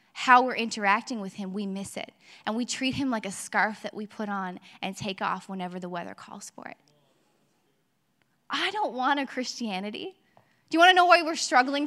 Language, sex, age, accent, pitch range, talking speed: English, female, 10-29, American, 215-280 Hz, 205 wpm